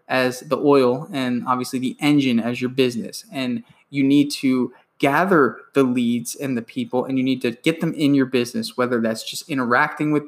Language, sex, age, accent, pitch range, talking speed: English, male, 20-39, American, 125-150 Hz, 200 wpm